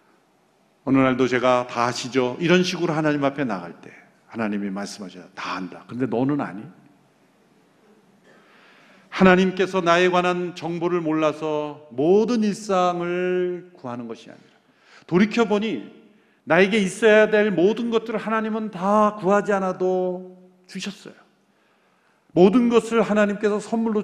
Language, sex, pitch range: Korean, male, 135-210 Hz